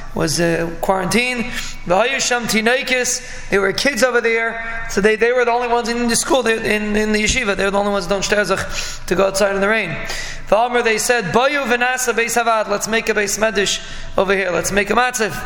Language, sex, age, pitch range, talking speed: English, male, 20-39, 205-235 Hz, 180 wpm